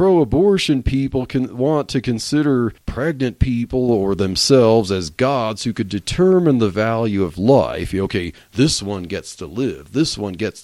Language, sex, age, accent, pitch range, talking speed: English, male, 40-59, American, 100-140 Hz, 160 wpm